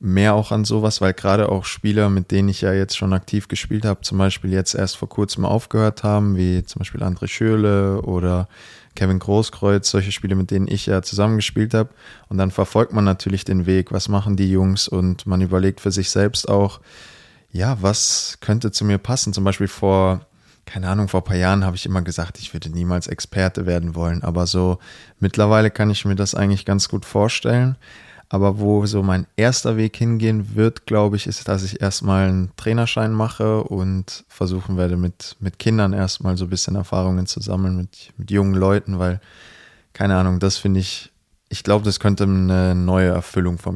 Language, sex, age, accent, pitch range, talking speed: German, male, 20-39, German, 95-105 Hz, 195 wpm